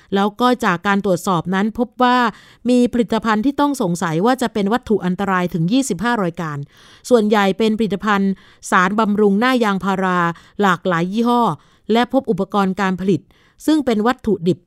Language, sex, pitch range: Thai, female, 190-235 Hz